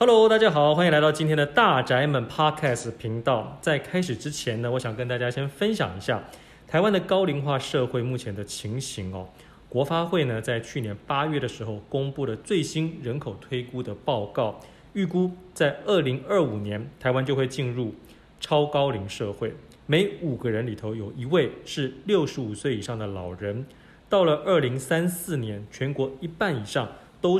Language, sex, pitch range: Chinese, male, 115-155 Hz